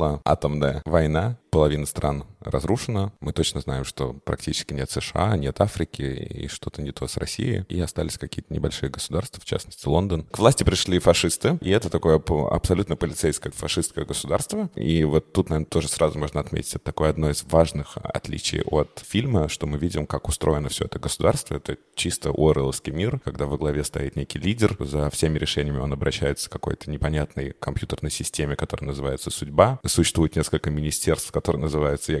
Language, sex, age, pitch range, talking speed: Russian, male, 20-39, 75-85 Hz, 175 wpm